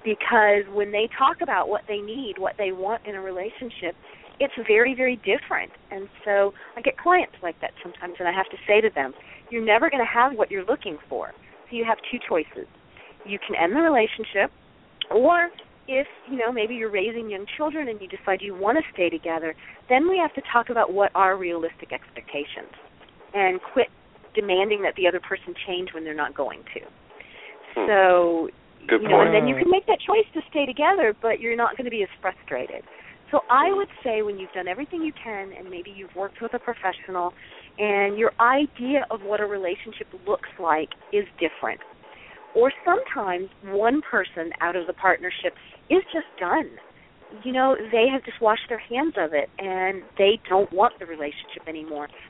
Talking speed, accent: 190 wpm, American